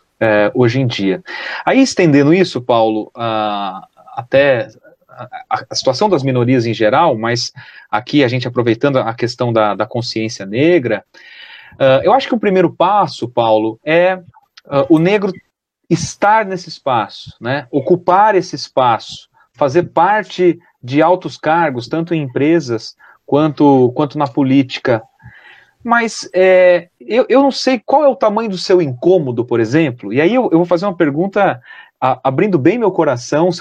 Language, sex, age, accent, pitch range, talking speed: Portuguese, male, 30-49, Brazilian, 125-185 Hz, 145 wpm